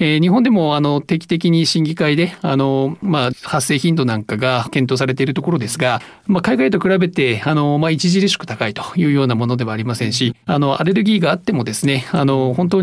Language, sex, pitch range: Japanese, male, 125-175 Hz